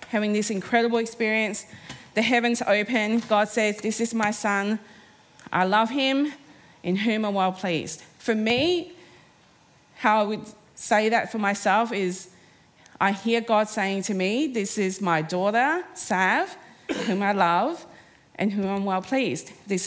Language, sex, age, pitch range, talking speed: English, female, 30-49, 190-230 Hz, 155 wpm